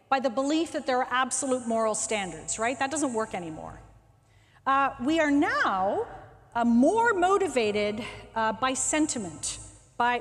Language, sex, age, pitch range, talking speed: English, female, 40-59, 215-285 Hz, 145 wpm